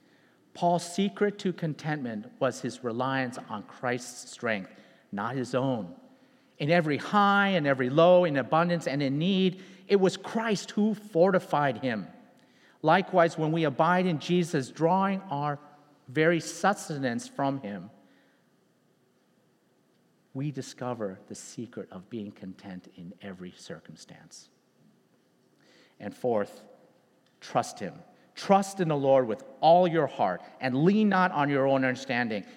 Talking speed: 130 wpm